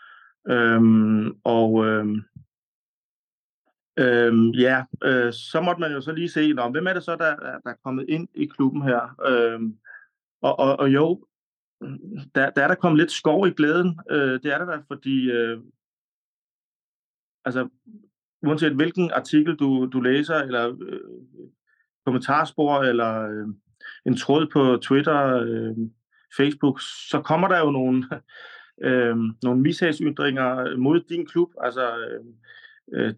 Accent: native